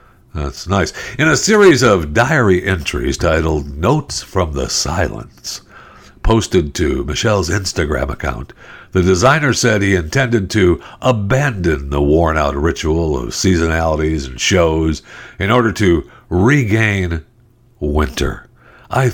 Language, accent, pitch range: English, American, 80-120 Hz